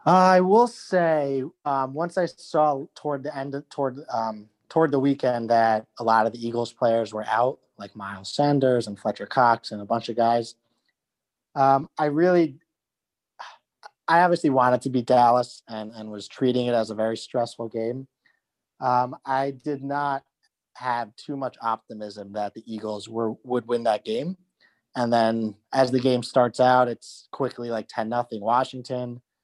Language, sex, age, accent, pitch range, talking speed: English, male, 30-49, American, 115-145 Hz, 170 wpm